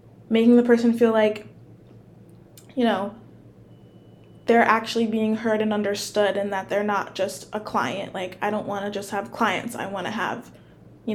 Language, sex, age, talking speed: English, female, 20-39, 165 wpm